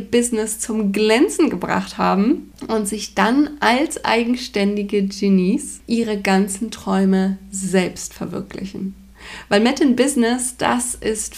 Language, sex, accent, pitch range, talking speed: German, female, German, 200-240 Hz, 115 wpm